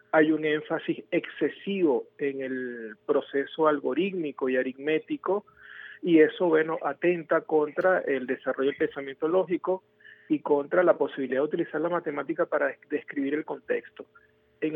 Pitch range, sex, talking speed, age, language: 135-160 Hz, male, 140 wpm, 40-59, Spanish